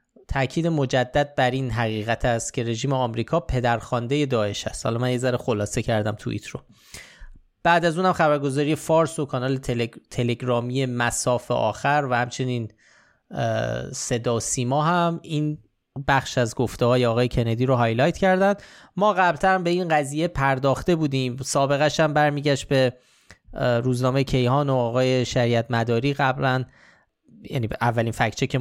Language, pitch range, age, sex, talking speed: Persian, 120-145 Hz, 20-39, male, 145 wpm